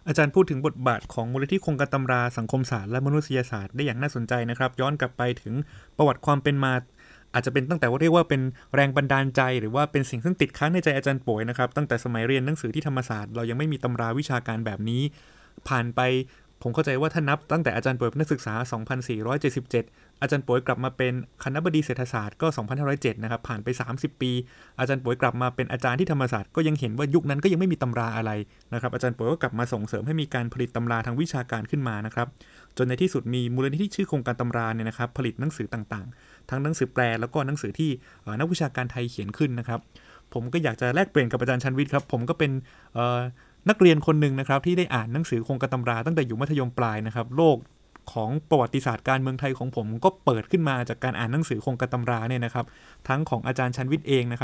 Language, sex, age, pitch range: Thai, male, 20-39, 120-145 Hz